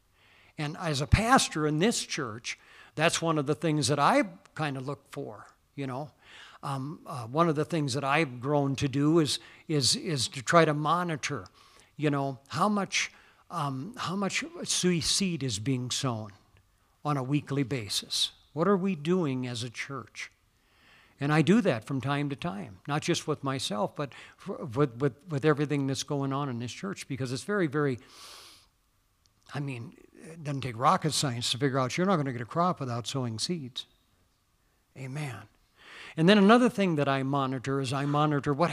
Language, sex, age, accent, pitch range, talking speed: English, male, 60-79, American, 130-165 Hz, 185 wpm